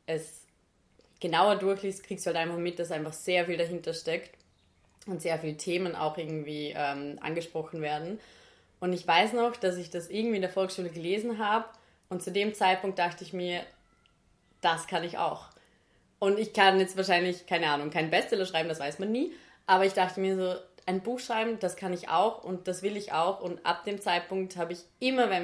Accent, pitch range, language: German, 160-190 Hz, German